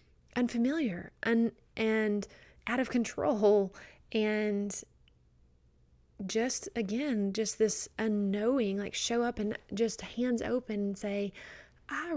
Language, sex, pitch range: English, female, 205-235 Hz